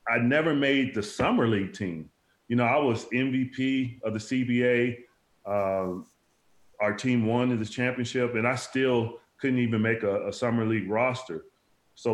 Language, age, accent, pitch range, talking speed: English, 30-49, American, 110-130 Hz, 170 wpm